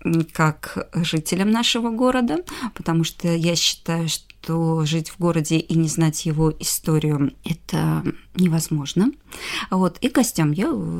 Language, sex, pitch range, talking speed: Russian, female, 160-215 Hz, 130 wpm